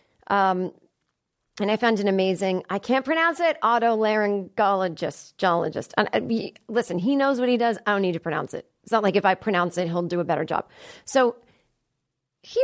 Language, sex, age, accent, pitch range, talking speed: English, female, 30-49, American, 185-255 Hz, 185 wpm